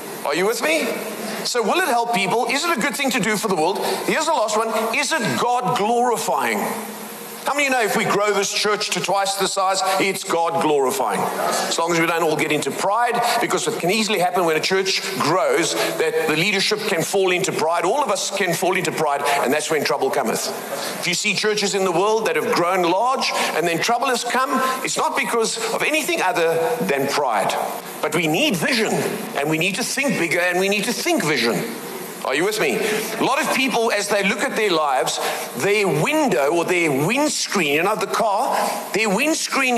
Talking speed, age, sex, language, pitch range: 220 wpm, 50-69, male, English, 185-245 Hz